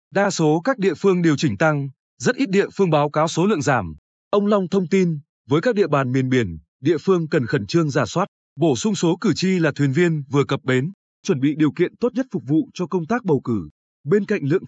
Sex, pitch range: male, 140-195 Hz